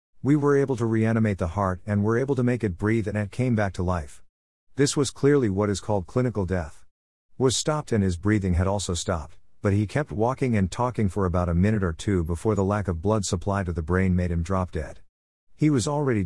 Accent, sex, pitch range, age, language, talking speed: American, male, 90-115 Hz, 50-69, English, 235 wpm